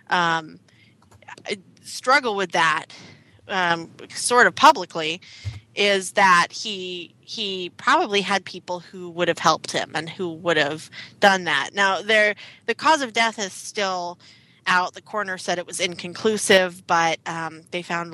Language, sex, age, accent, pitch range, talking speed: English, female, 30-49, American, 165-185 Hz, 150 wpm